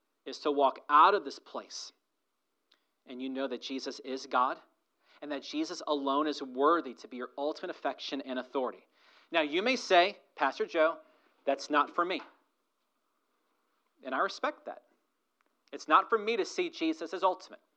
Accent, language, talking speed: American, English, 170 wpm